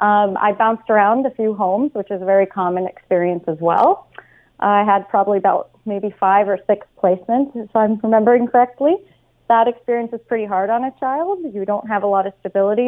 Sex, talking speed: female, 200 wpm